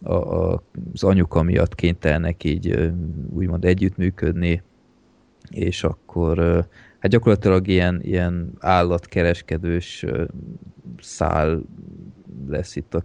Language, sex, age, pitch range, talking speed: Hungarian, male, 20-39, 85-95 Hz, 85 wpm